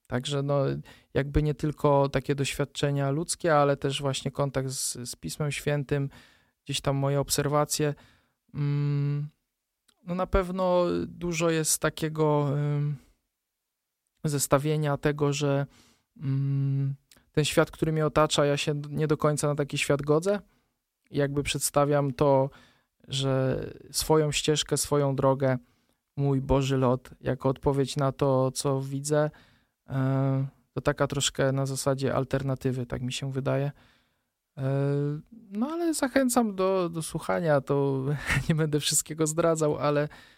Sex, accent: male, native